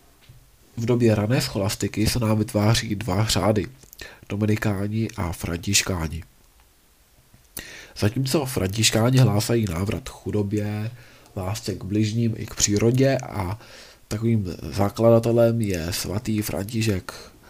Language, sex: Czech, male